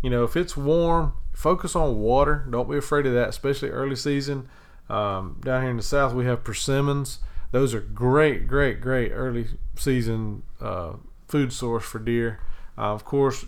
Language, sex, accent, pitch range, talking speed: English, male, American, 115-135 Hz, 180 wpm